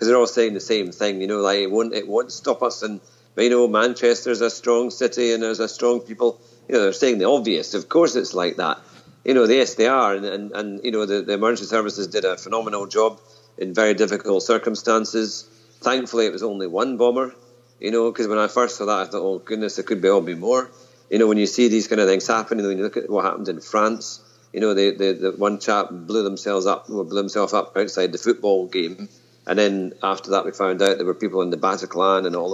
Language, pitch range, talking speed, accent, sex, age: English, 100-120 Hz, 250 wpm, British, male, 50-69